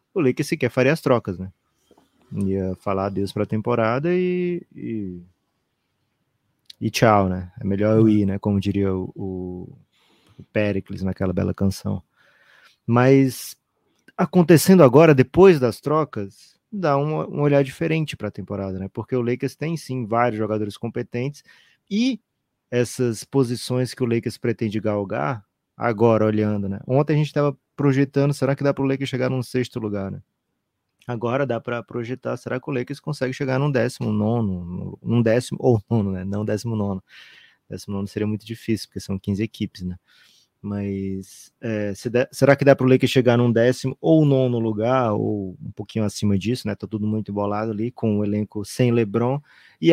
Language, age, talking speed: Portuguese, 20-39, 175 wpm